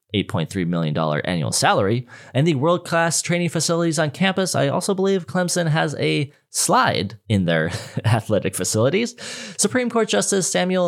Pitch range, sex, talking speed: 125-185 Hz, male, 140 wpm